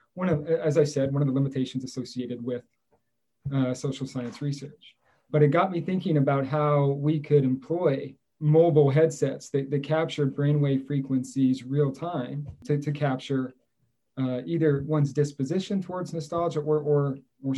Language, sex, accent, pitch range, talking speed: English, male, American, 130-150 Hz, 155 wpm